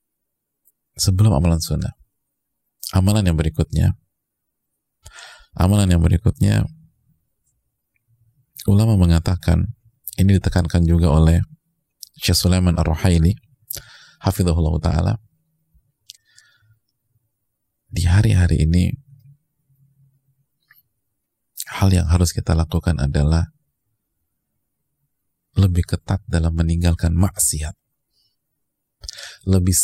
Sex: male